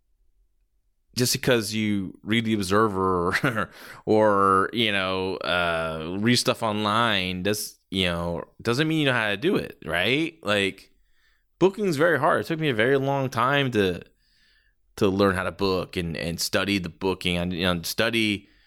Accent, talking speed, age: American, 170 wpm, 20-39